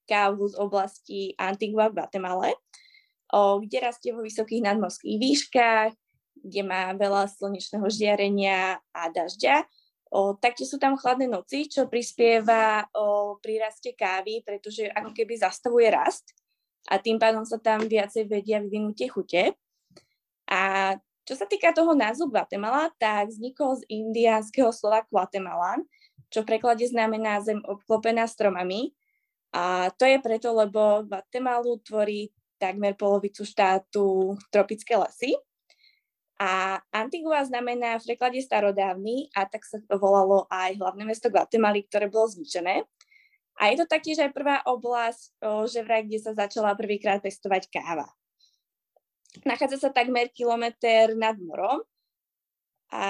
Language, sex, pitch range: Czech, female, 200-245 Hz